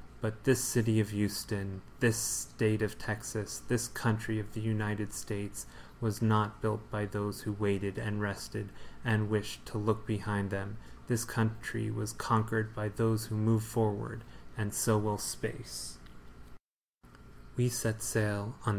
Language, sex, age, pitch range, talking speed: English, male, 30-49, 105-115 Hz, 150 wpm